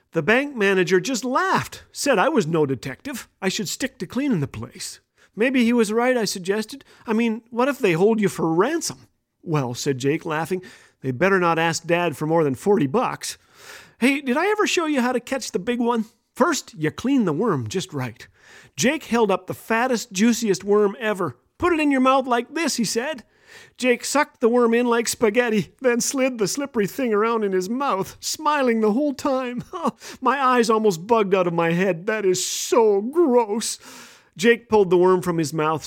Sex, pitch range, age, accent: male, 180-245 Hz, 40-59, American